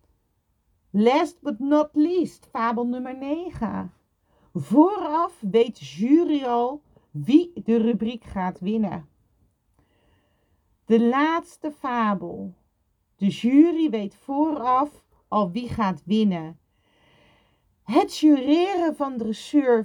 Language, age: Dutch, 40-59